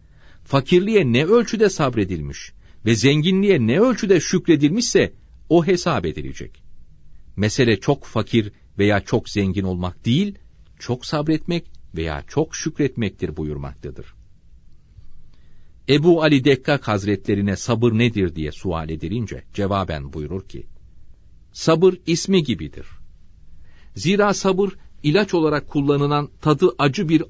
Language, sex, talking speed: Turkish, male, 110 wpm